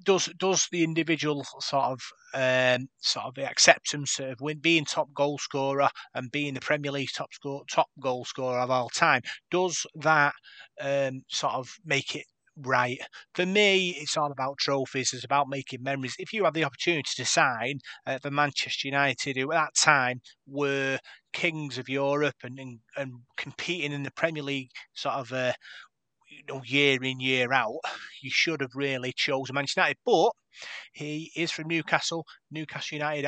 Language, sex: English, male